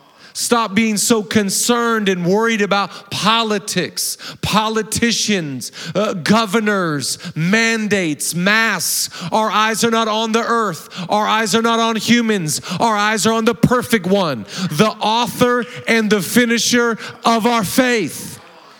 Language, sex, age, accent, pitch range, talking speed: English, male, 40-59, American, 185-230 Hz, 130 wpm